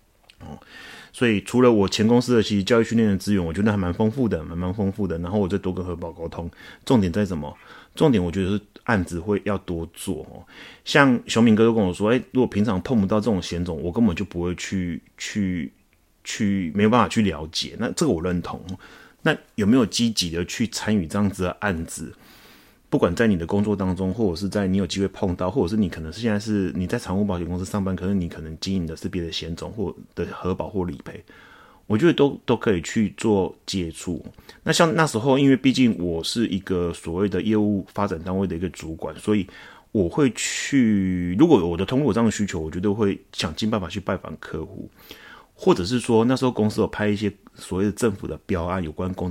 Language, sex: Chinese, male